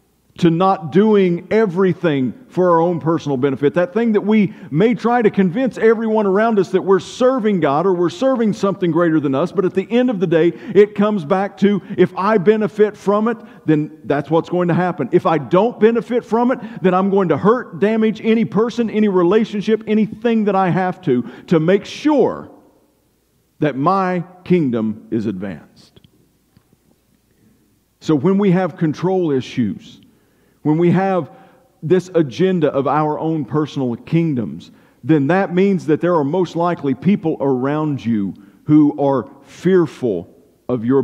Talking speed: 165 wpm